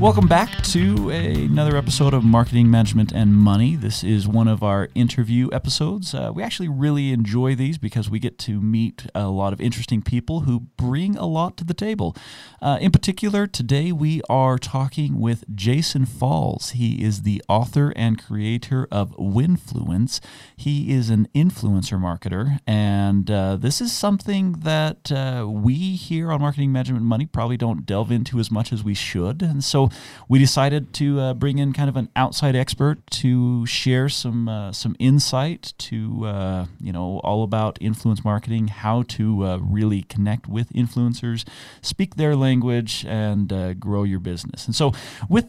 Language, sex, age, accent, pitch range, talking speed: English, male, 40-59, American, 105-145 Hz, 175 wpm